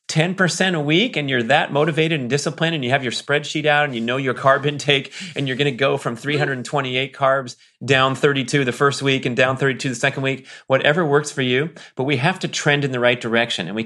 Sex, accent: male, American